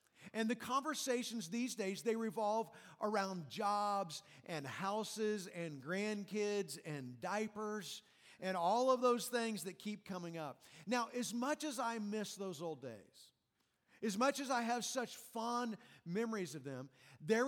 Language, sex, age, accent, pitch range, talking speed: English, male, 50-69, American, 195-240 Hz, 150 wpm